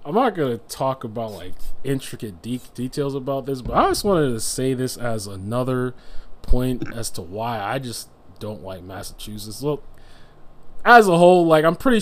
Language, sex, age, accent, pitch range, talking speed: English, male, 20-39, American, 110-140 Hz, 190 wpm